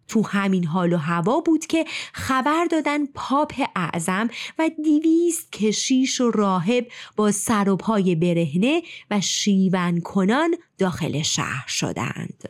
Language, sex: Persian, female